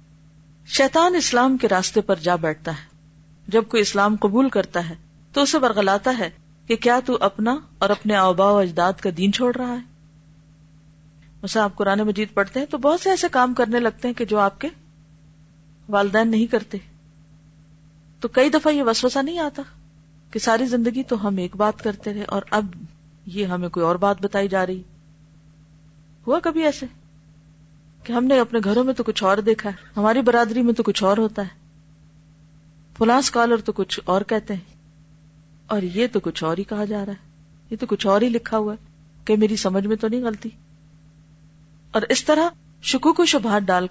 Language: Urdu